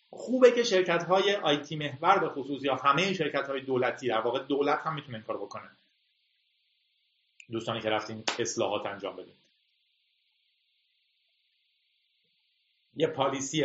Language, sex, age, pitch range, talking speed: Persian, male, 40-59, 120-170 Hz, 110 wpm